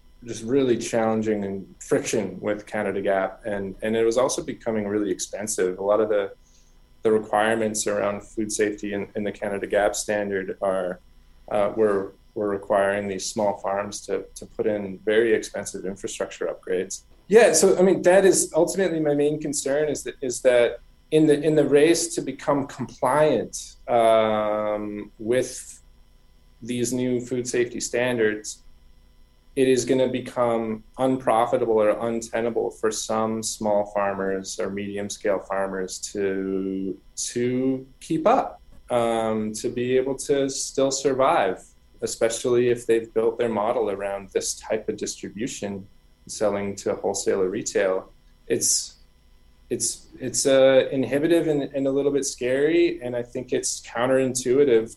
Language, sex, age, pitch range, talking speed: English, male, 20-39, 100-130 Hz, 145 wpm